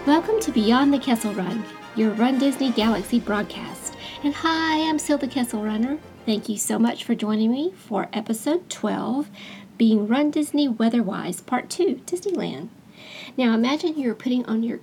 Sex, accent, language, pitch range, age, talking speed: female, American, English, 220-275 Hz, 40-59, 160 wpm